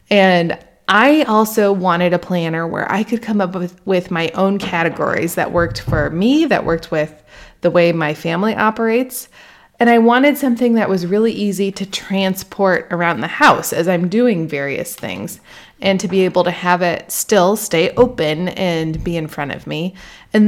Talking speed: 185 wpm